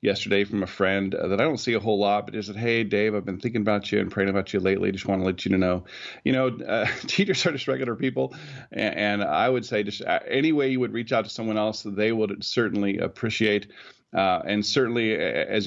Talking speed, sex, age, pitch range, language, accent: 235 wpm, male, 40-59, 100-120 Hz, English, American